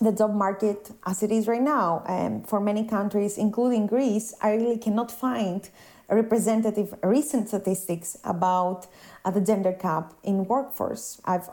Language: English